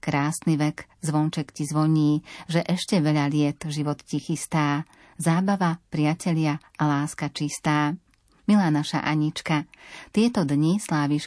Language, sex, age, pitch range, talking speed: Slovak, female, 40-59, 150-170 Hz, 120 wpm